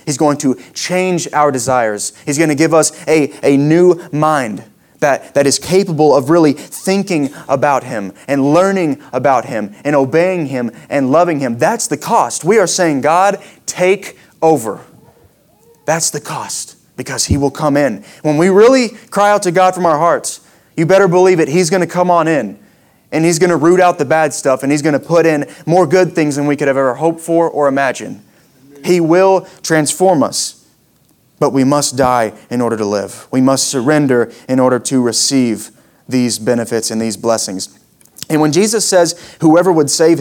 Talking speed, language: 190 wpm, English